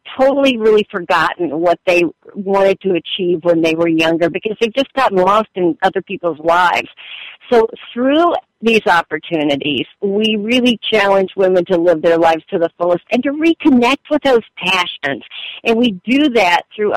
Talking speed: 165 wpm